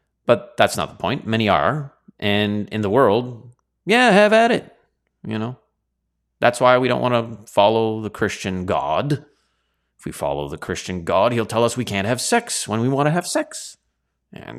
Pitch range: 90-125 Hz